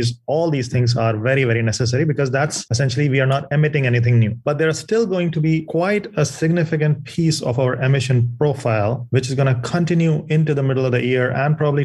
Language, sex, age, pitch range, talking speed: English, male, 30-49, 120-140 Hz, 225 wpm